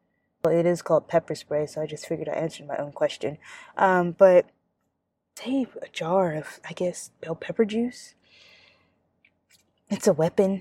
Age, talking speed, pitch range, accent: 20-39, 165 wpm, 155-195 Hz, American